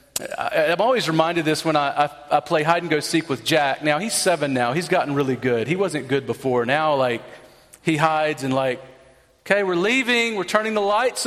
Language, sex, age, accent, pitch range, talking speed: English, male, 40-59, American, 135-185 Hz, 220 wpm